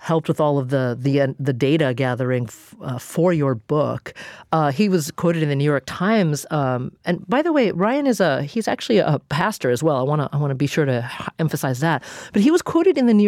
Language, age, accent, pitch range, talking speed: English, 40-59, American, 140-195 Hz, 260 wpm